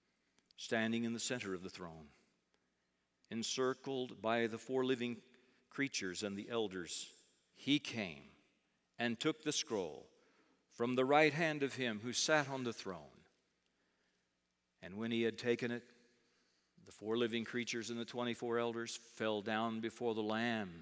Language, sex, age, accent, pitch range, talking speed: English, male, 50-69, American, 105-140 Hz, 150 wpm